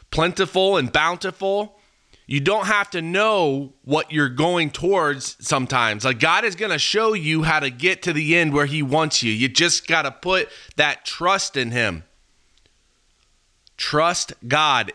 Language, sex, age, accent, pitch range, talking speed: English, male, 30-49, American, 130-175 Hz, 165 wpm